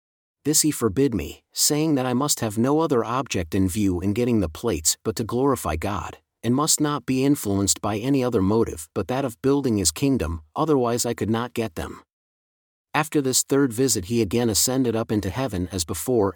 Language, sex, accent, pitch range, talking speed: English, male, American, 100-130 Hz, 200 wpm